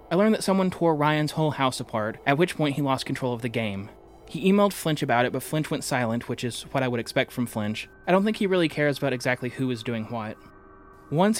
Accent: American